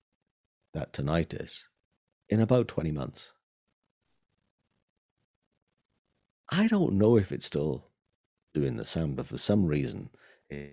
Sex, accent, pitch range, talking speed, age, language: male, British, 80-110 Hz, 110 wpm, 50-69, English